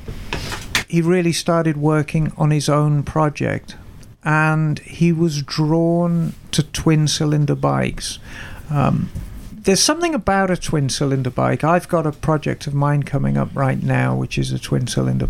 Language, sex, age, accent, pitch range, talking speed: English, male, 50-69, British, 110-165 Hz, 140 wpm